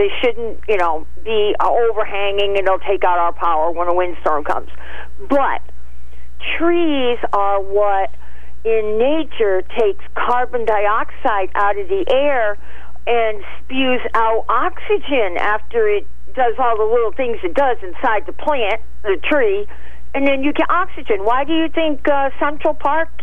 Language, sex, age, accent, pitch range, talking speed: English, female, 50-69, American, 230-340 Hz, 150 wpm